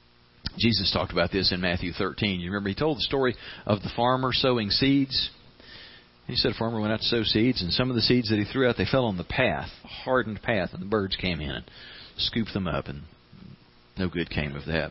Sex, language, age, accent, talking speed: male, English, 40-59, American, 240 wpm